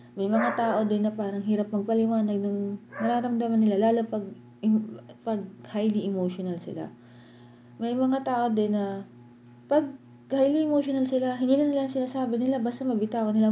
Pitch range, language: 185-240 Hz, English